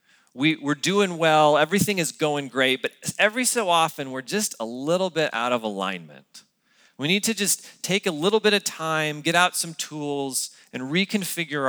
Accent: American